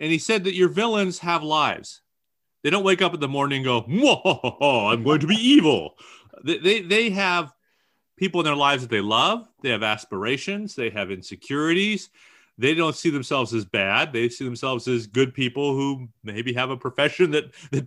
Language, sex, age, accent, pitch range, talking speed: English, male, 40-59, American, 130-170 Hz, 200 wpm